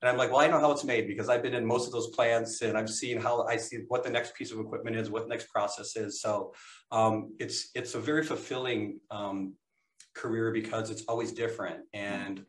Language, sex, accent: English, male, American